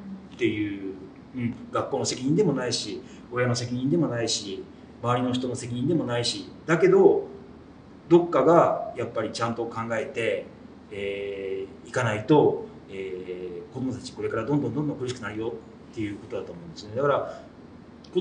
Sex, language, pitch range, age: male, Japanese, 100-160 Hz, 40-59